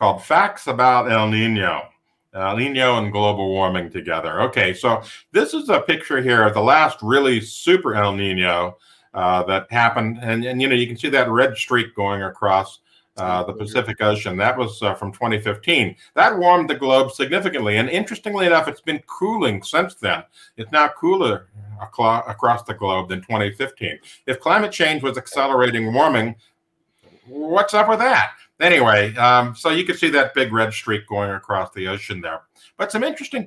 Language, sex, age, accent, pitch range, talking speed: English, male, 50-69, American, 110-150 Hz, 175 wpm